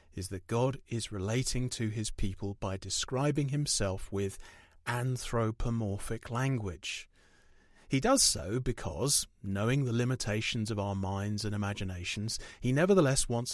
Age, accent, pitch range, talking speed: 30-49, British, 105-135 Hz, 130 wpm